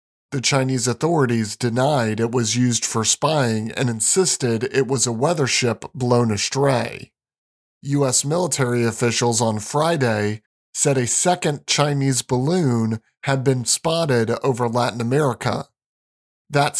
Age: 40-59